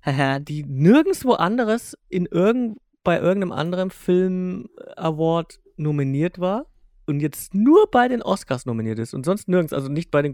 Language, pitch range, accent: German, 130-180 Hz, German